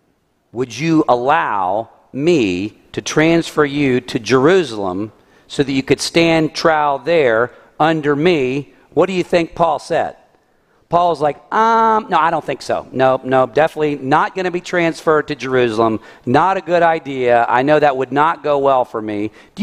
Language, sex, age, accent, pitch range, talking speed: English, male, 40-59, American, 115-165 Hz, 170 wpm